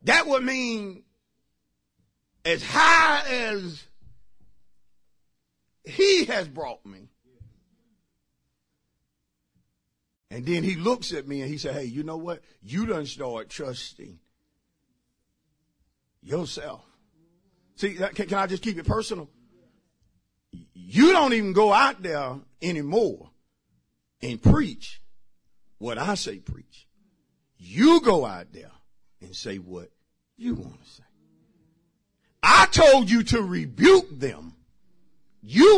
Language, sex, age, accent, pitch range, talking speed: English, male, 50-69, American, 130-215 Hz, 110 wpm